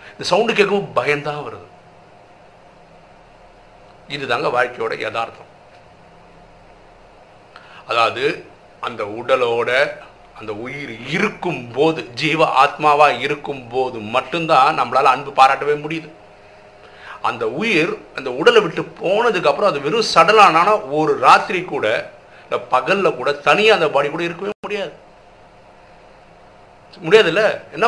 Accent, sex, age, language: native, male, 50-69, Tamil